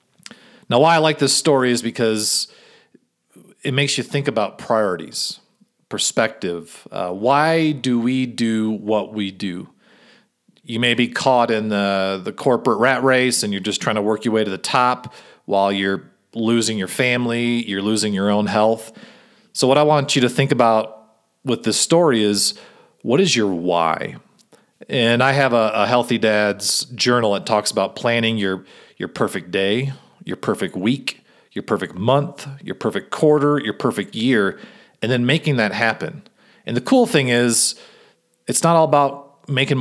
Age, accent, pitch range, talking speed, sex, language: 40-59, American, 110-140 Hz, 170 wpm, male, English